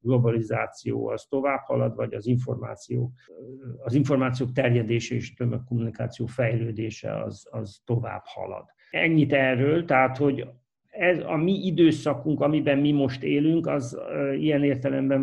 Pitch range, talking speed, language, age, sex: 120-140 Hz, 125 wpm, Hungarian, 60-79, male